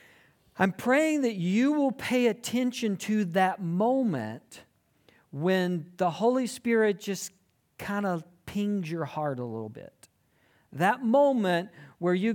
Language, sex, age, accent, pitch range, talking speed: English, male, 50-69, American, 160-210 Hz, 130 wpm